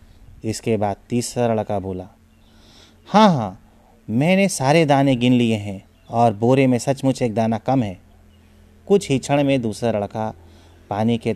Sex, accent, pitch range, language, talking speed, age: male, native, 105-130 Hz, Hindi, 155 wpm, 30-49